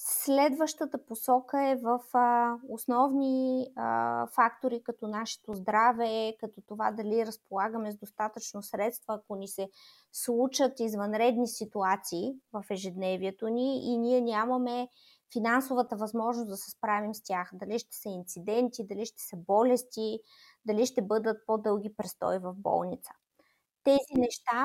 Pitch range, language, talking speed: 215-250 Hz, Bulgarian, 125 wpm